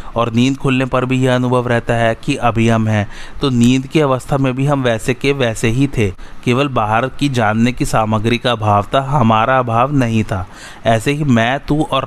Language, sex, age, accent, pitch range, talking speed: Hindi, male, 30-49, native, 110-130 Hz, 215 wpm